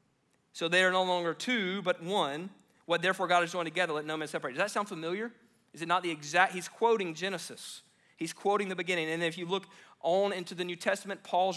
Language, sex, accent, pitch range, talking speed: English, male, American, 160-200 Hz, 230 wpm